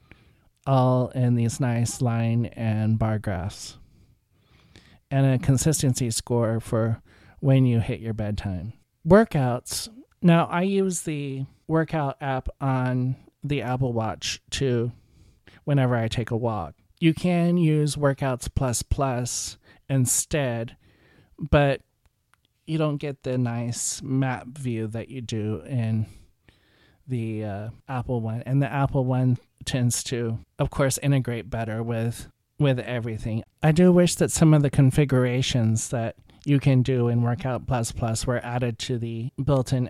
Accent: American